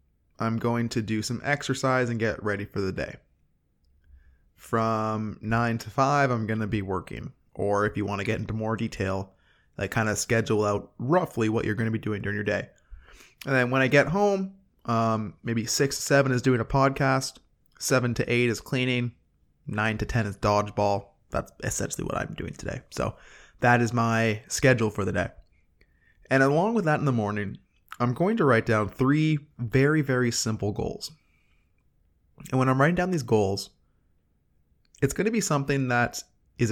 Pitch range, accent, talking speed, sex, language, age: 105-135 Hz, American, 190 wpm, male, English, 20-39